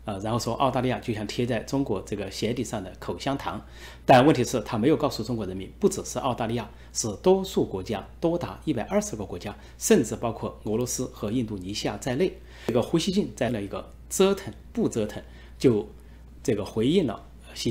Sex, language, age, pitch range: male, Chinese, 30-49, 95-130 Hz